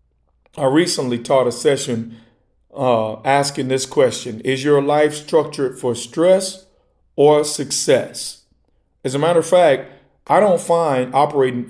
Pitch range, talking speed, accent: 125-160 Hz, 135 wpm, American